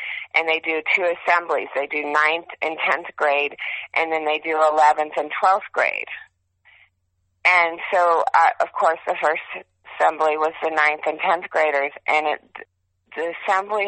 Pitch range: 135-175 Hz